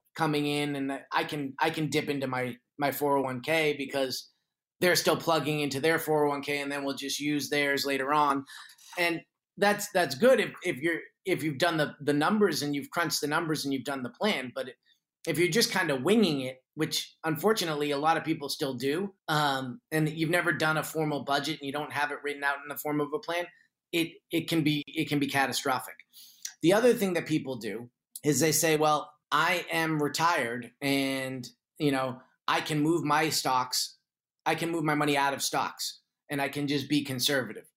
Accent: American